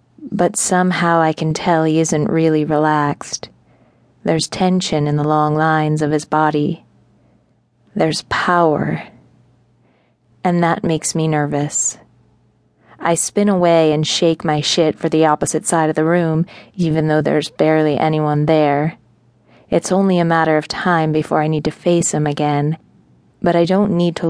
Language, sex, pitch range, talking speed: English, female, 155-175 Hz, 155 wpm